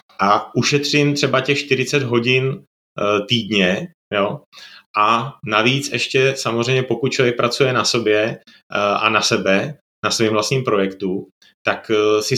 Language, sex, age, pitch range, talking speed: Slovak, male, 30-49, 110-135 Hz, 125 wpm